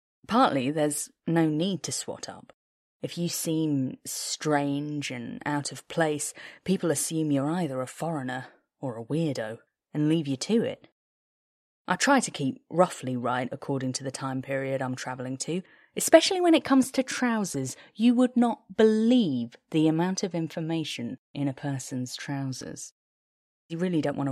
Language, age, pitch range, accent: English, 20-39, 135-190 Hz, British